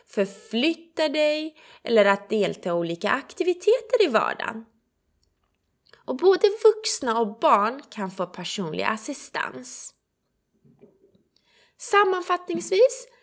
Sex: female